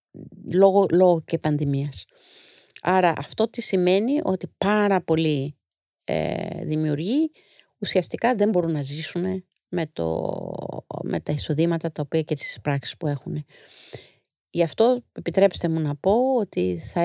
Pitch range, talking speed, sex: 155-195 Hz, 135 wpm, female